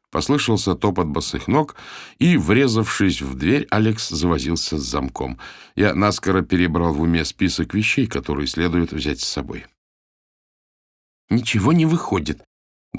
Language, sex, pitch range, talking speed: Russian, male, 80-110 Hz, 130 wpm